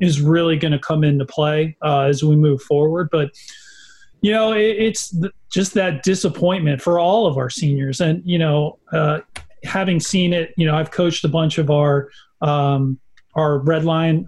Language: English